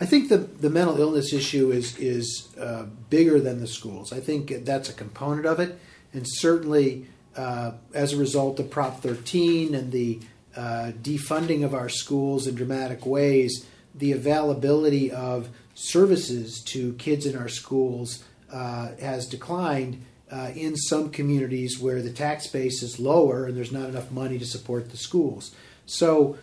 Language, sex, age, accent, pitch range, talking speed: English, male, 50-69, American, 125-145 Hz, 165 wpm